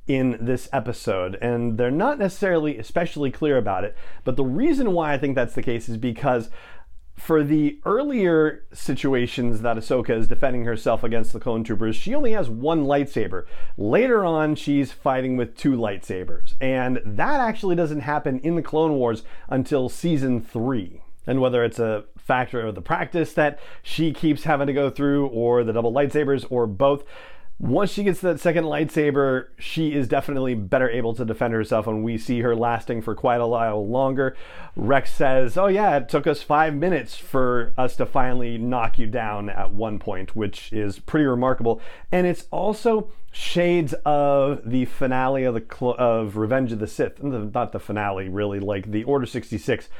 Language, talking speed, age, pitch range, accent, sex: English, 180 wpm, 40-59, 115-150 Hz, American, male